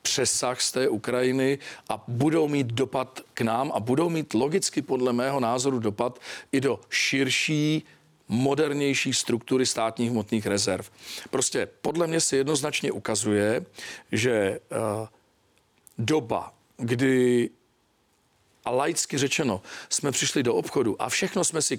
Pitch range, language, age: 120-140 Hz, Czech, 40-59